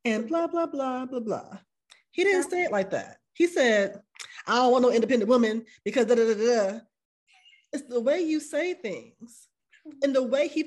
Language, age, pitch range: English, 20-39, 210-280 Hz